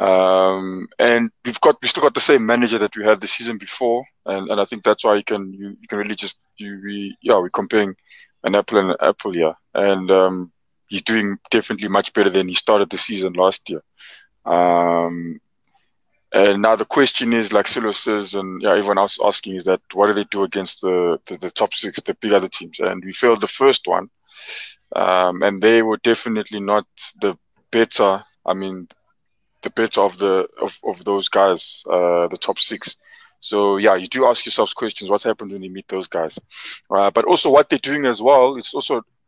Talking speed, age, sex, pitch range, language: 210 wpm, 20-39, male, 95-115 Hz, English